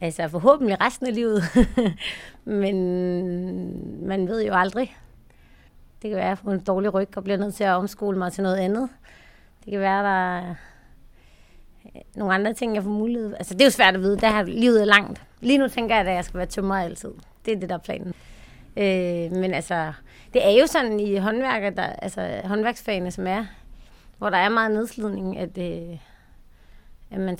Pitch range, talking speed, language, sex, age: 180-215 Hz, 195 wpm, Danish, female, 30-49